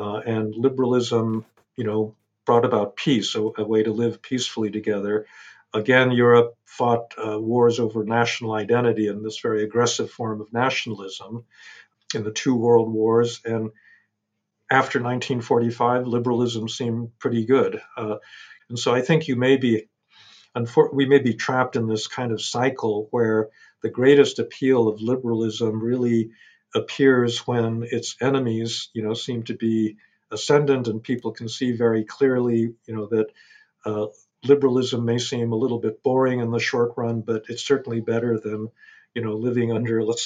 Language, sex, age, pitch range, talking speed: English, male, 50-69, 110-125 Hz, 160 wpm